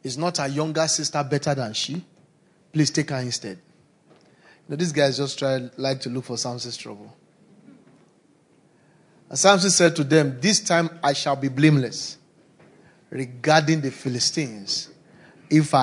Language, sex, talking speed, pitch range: English, male, 150 wpm, 145-180 Hz